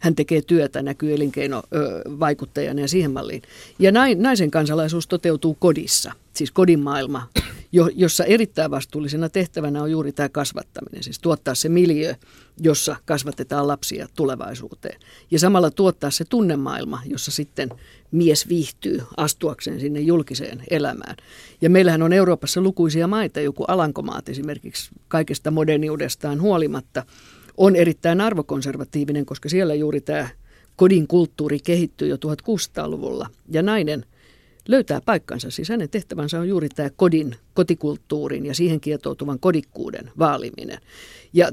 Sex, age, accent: female, 50-69, native